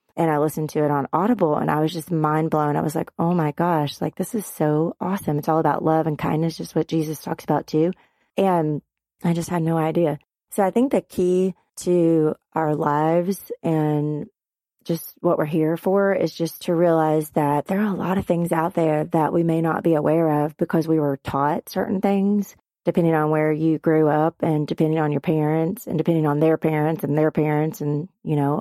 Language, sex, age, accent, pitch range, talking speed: English, female, 30-49, American, 155-170 Hz, 220 wpm